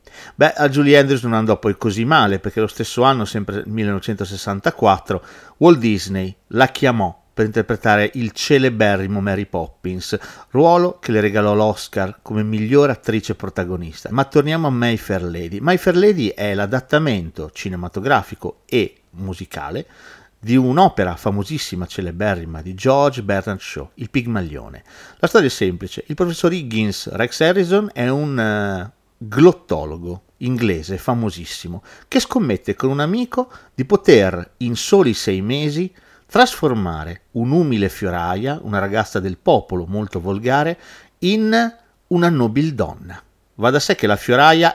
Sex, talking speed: male, 135 wpm